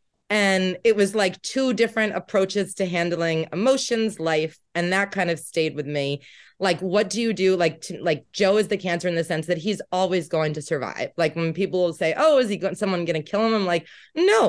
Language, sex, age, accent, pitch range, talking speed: English, female, 30-49, American, 170-215 Hz, 230 wpm